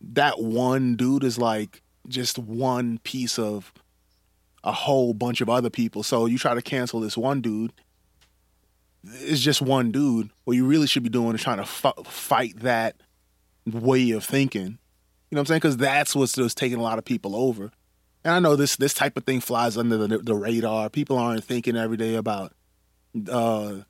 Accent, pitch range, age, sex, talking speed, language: American, 115-130 Hz, 20-39, male, 195 wpm, English